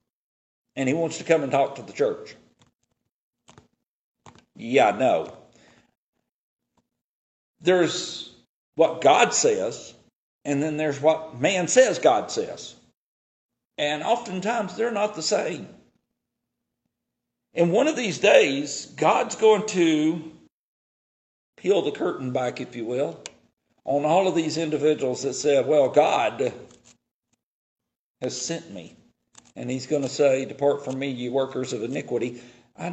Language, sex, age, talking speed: English, male, 50-69, 130 wpm